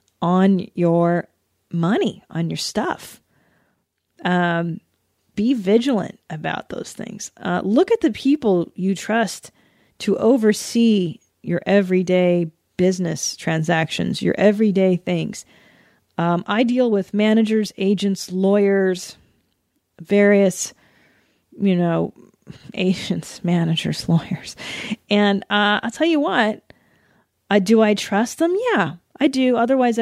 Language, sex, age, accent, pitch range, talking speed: English, female, 40-59, American, 180-230 Hz, 110 wpm